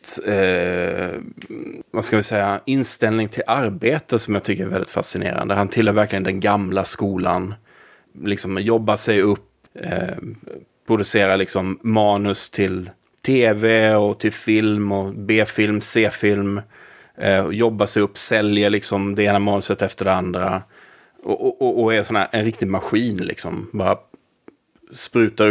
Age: 30-49